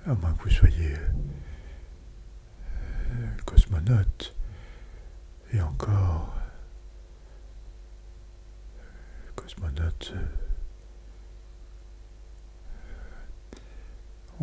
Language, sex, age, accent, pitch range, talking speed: French, male, 60-79, French, 75-105 Hz, 45 wpm